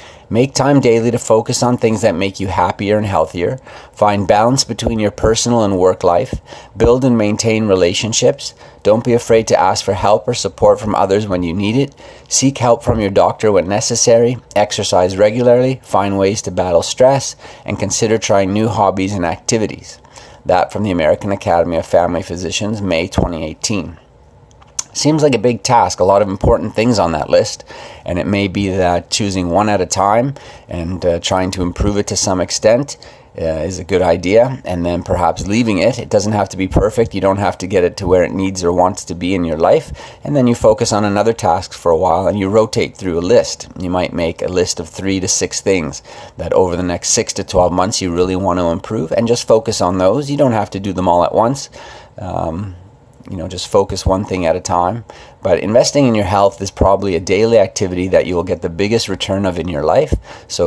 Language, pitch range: English, 90-115 Hz